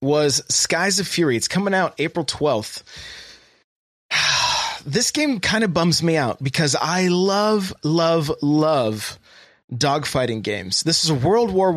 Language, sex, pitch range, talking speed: English, male, 130-180 Hz, 145 wpm